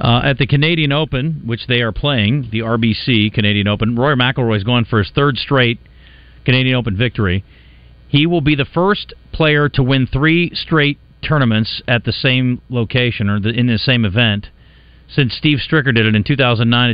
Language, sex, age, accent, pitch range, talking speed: English, male, 40-59, American, 100-125 Hz, 180 wpm